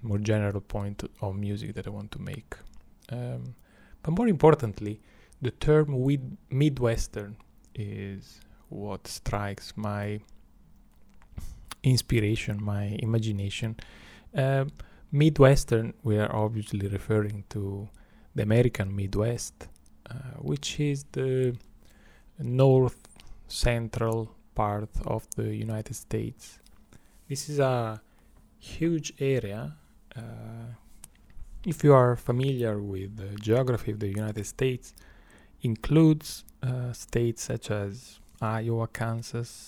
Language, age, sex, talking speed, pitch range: English, 20-39, male, 105 wpm, 105-125 Hz